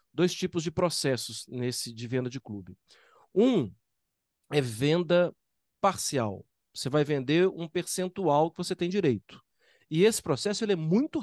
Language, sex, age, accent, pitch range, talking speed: Portuguese, male, 40-59, Brazilian, 140-185 Hz, 150 wpm